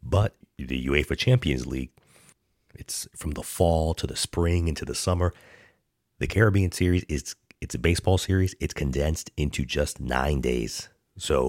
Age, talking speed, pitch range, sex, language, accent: 30-49, 155 wpm, 70-90 Hz, male, English, American